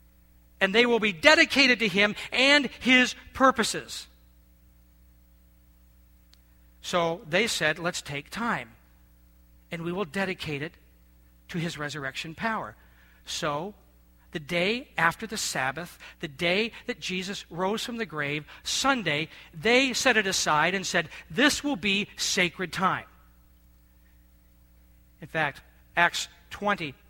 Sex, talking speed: male, 120 wpm